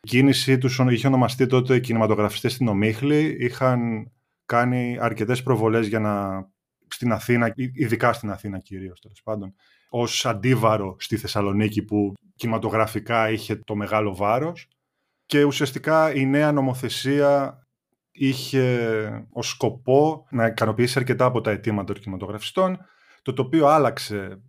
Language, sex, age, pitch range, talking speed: Greek, male, 20-39, 110-140 Hz, 125 wpm